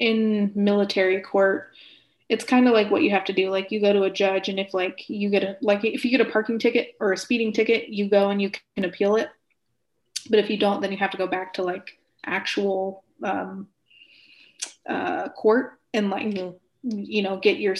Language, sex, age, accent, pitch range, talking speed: English, female, 20-39, American, 190-220 Hz, 215 wpm